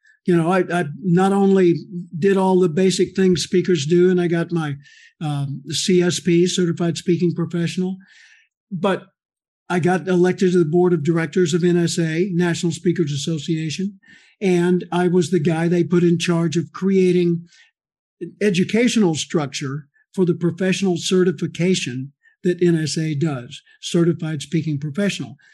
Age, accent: 60-79, American